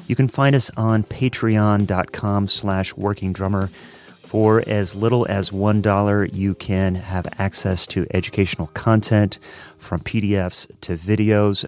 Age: 30-49